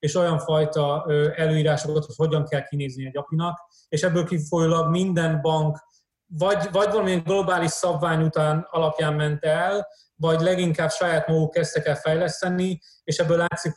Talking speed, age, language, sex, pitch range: 150 wpm, 30-49, Hungarian, male, 145-170 Hz